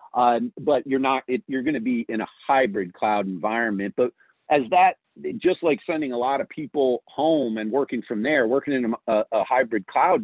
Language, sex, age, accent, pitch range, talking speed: English, male, 50-69, American, 115-160 Hz, 205 wpm